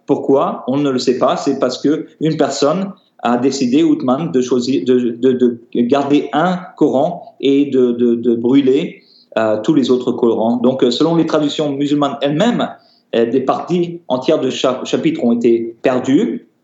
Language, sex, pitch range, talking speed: French, male, 120-150 Hz, 165 wpm